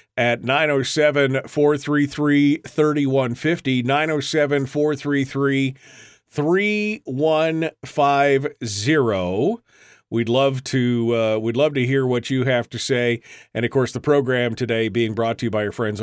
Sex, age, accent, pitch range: male, 40-59, American, 105-140 Hz